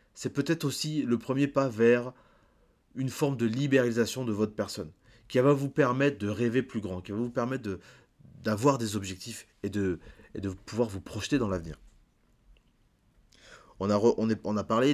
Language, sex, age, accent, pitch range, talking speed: French, male, 30-49, French, 100-125 Hz, 165 wpm